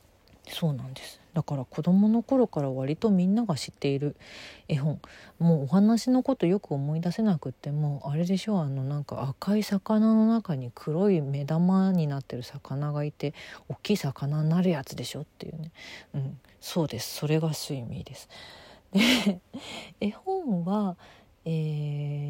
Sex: female